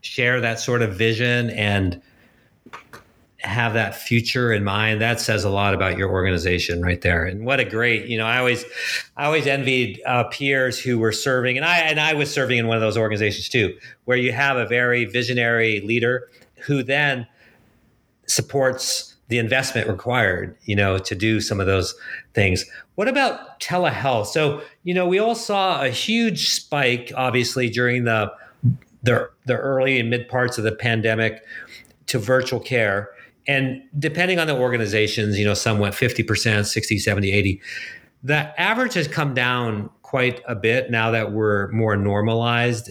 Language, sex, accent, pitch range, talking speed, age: English, male, American, 110-140 Hz, 165 wpm, 50-69